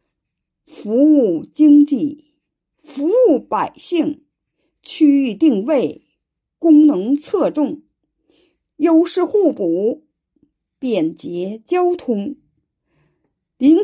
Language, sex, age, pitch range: Chinese, female, 50-69, 280-350 Hz